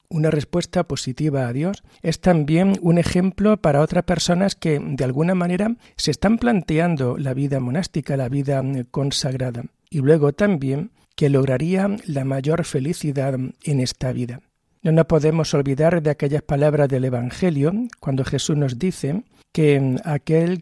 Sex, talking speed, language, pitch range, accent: male, 150 wpm, Spanish, 140-170 Hz, Spanish